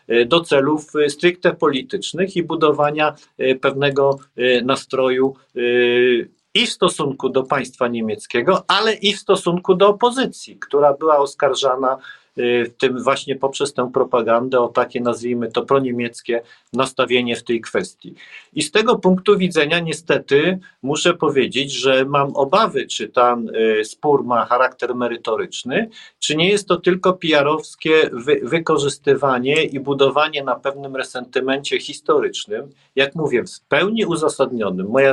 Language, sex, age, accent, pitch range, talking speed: Polish, male, 50-69, native, 125-165 Hz, 130 wpm